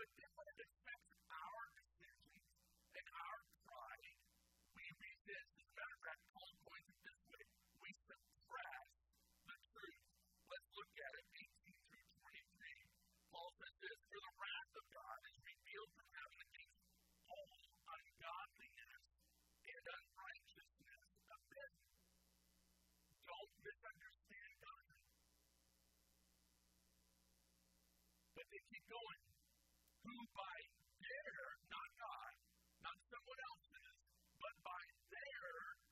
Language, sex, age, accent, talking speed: English, female, 50-69, American, 125 wpm